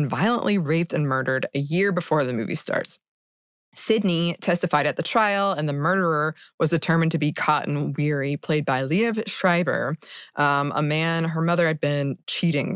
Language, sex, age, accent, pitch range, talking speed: English, female, 20-39, American, 150-195 Hz, 175 wpm